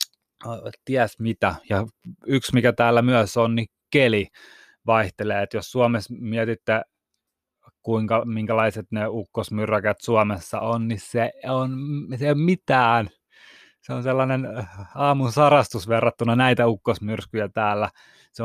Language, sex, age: Finnish, male, 20-39